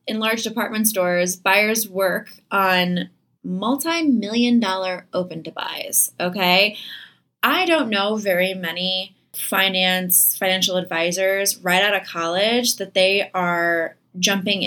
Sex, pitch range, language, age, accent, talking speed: female, 175-210 Hz, English, 20-39, American, 125 wpm